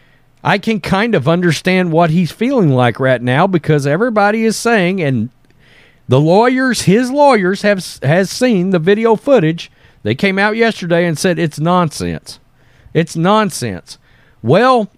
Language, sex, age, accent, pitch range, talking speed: English, male, 50-69, American, 145-225 Hz, 150 wpm